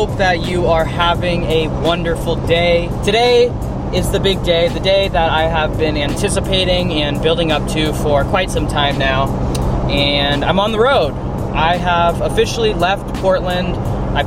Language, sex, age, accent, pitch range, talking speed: English, male, 20-39, American, 150-175 Hz, 165 wpm